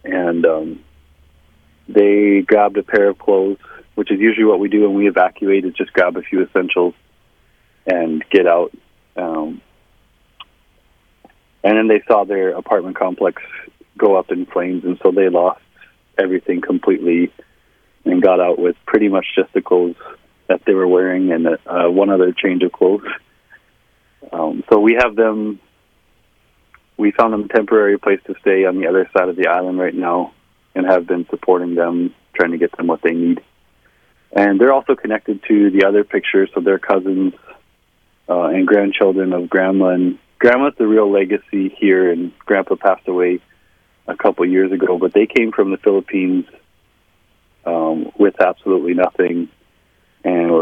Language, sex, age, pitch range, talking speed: English, male, 30-49, 90-100 Hz, 165 wpm